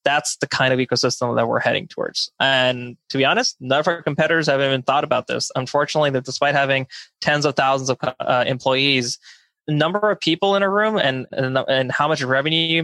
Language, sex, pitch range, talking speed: English, male, 125-145 Hz, 215 wpm